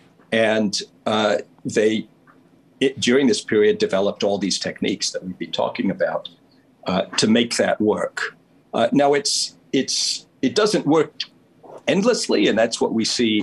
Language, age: English, 50-69